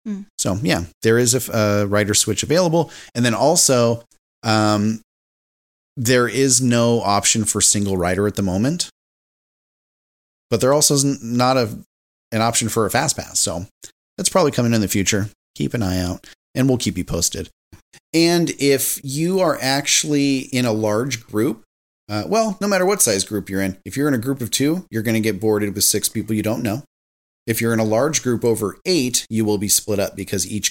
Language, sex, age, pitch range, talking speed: English, male, 30-49, 100-140 Hz, 200 wpm